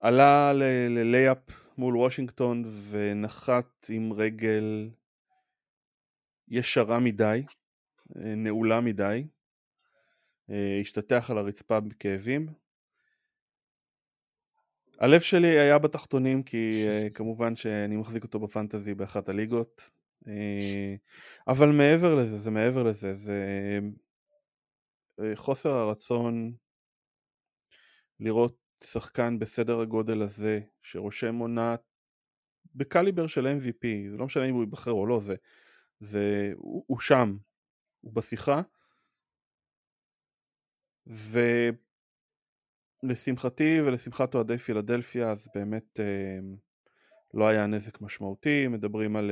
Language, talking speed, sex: Hebrew, 90 wpm, male